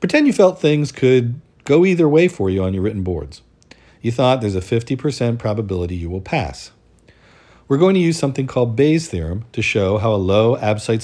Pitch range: 95-125 Hz